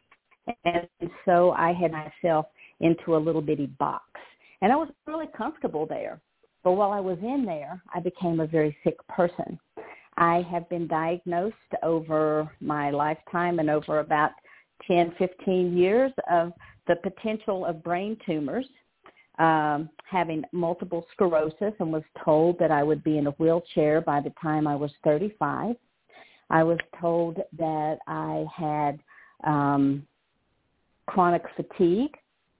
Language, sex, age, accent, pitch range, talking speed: English, female, 50-69, American, 155-180 Hz, 140 wpm